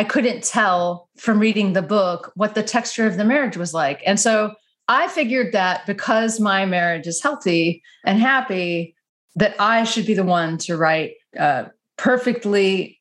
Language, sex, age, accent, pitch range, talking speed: English, female, 30-49, American, 180-230 Hz, 170 wpm